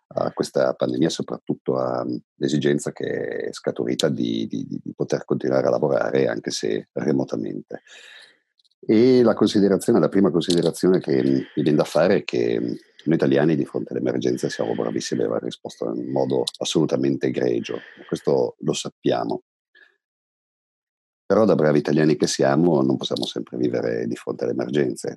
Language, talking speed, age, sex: Italian, 150 wpm, 50-69, male